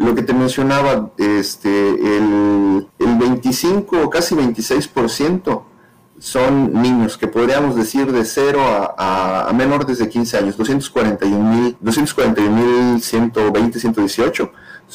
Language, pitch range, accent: Spanish, 105-130 Hz, Mexican